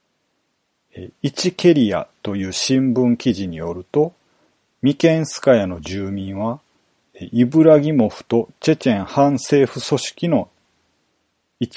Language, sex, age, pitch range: Japanese, male, 40-59, 115-140 Hz